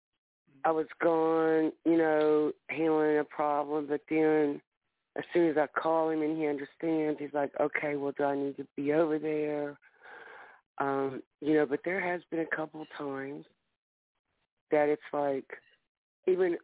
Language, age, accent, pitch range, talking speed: English, 40-59, American, 140-165 Hz, 160 wpm